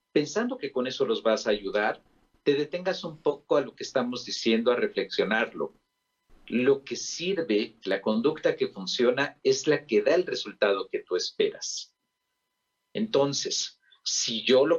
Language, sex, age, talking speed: Spanish, male, 50-69, 160 wpm